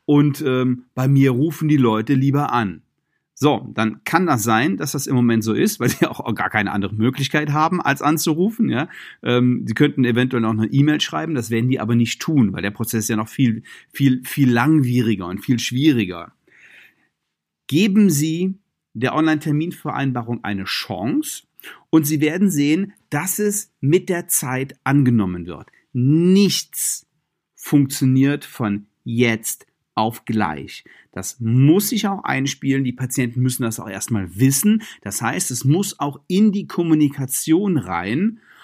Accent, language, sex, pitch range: German, German, male, 120-155 Hz